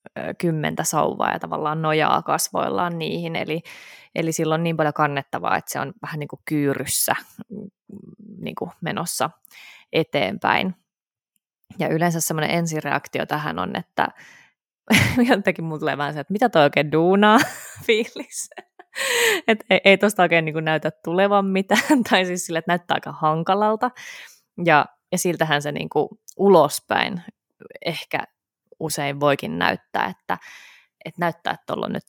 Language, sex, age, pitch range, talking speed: Finnish, female, 20-39, 150-195 Hz, 135 wpm